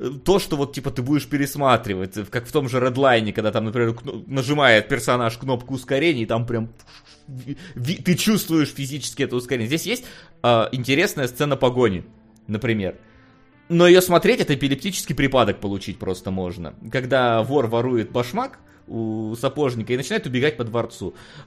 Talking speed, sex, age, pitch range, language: 150 wpm, male, 20-39, 115-150 Hz, Russian